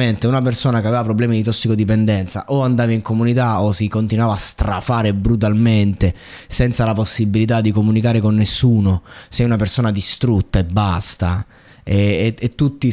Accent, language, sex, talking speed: native, Italian, male, 160 wpm